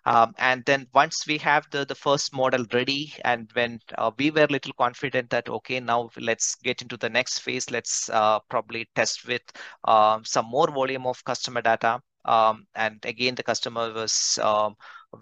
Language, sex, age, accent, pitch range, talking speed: English, male, 30-49, Indian, 115-140 Hz, 185 wpm